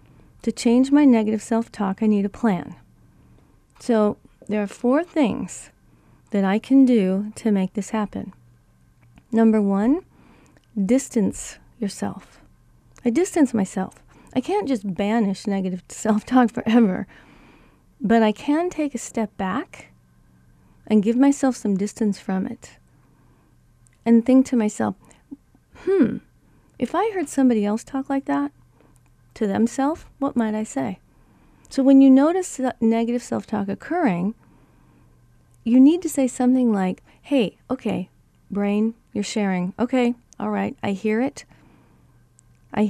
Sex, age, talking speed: female, 40-59, 135 wpm